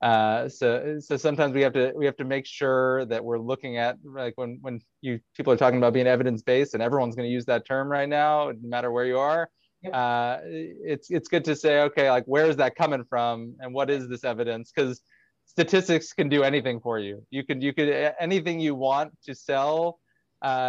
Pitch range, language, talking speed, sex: 120-145 Hz, English, 220 wpm, male